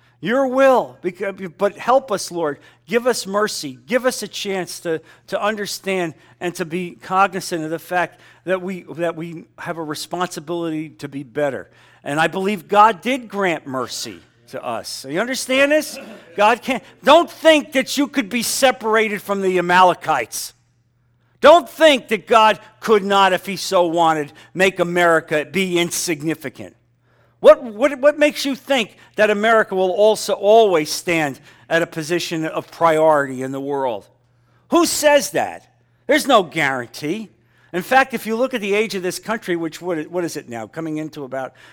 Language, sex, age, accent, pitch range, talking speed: English, male, 50-69, American, 160-225 Hz, 165 wpm